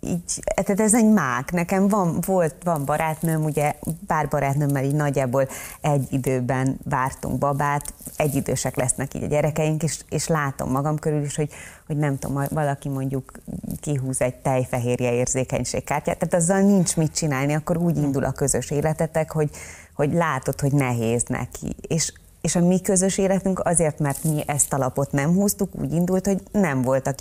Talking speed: 165 wpm